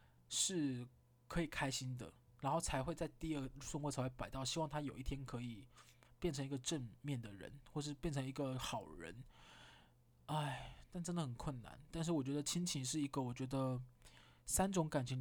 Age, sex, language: 20-39, male, Chinese